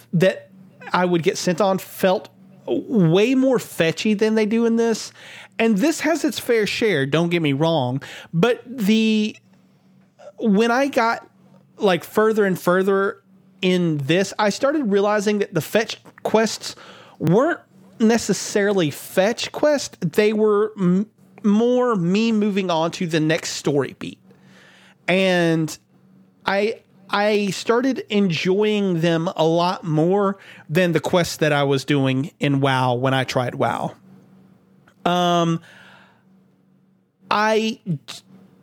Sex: male